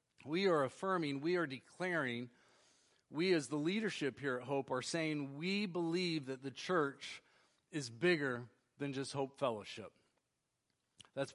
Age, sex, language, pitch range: 40-59, male, English, 140-175 Hz